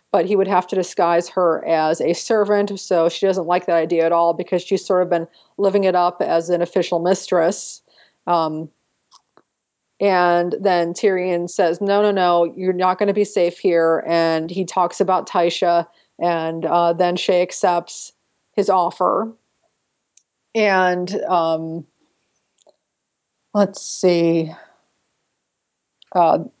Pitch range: 170-195 Hz